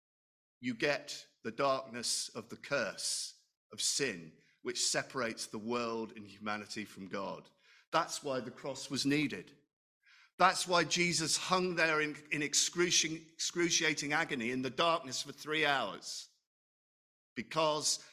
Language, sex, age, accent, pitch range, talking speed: English, male, 50-69, British, 130-165 Hz, 130 wpm